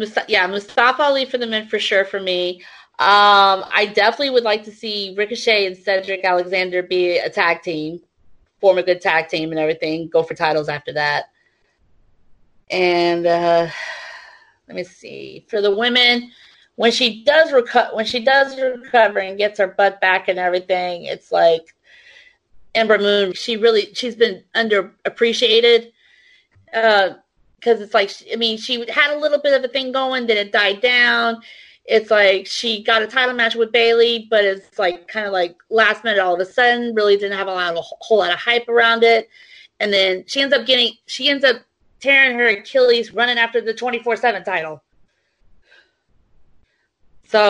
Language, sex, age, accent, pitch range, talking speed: English, female, 30-49, American, 185-235 Hz, 175 wpm